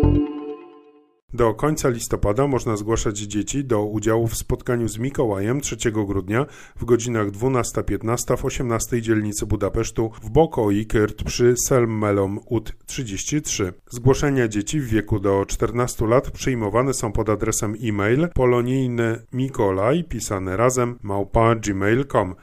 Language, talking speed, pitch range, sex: Polish, 115 wpm, 100-130 Hz, male